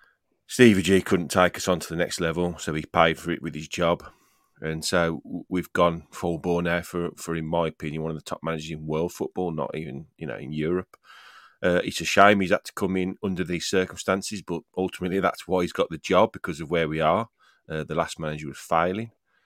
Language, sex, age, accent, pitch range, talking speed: English, male, 30-49, British, 80-95 Hz, 230 wpm